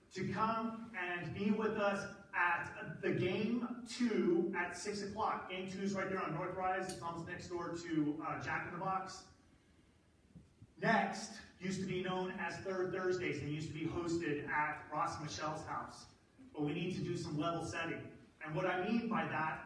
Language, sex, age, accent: English, male, 30-49, American